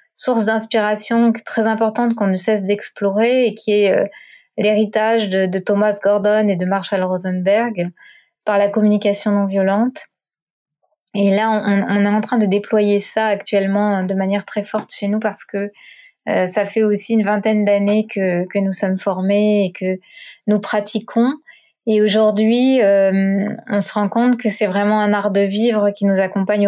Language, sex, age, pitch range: French, female, 20-39, 200-220 Hz